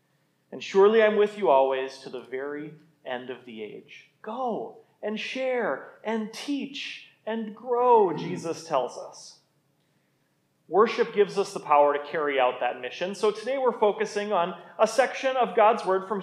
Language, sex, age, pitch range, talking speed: English, male, 30-49, 165-225 Hz, 165 wpm